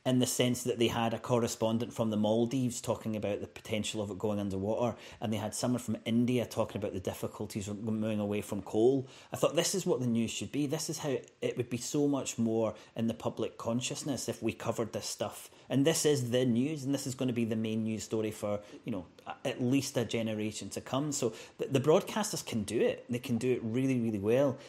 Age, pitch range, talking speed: 30-49, 105-125 Hz, 240 wpm